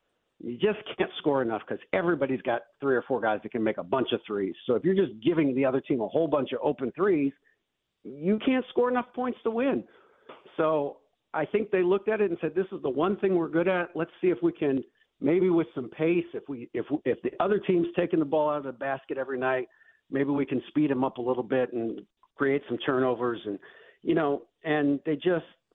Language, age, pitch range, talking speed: English, 50-69, 120-180 Hz, 235 wpm